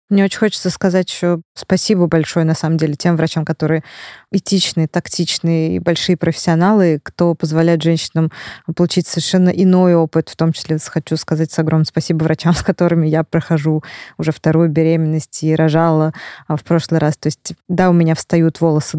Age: 20-39